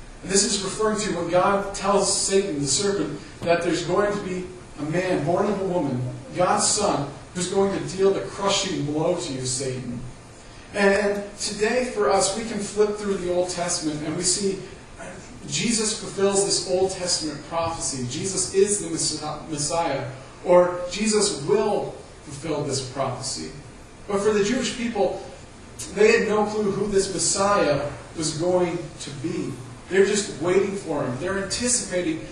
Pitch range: 140-195 Hz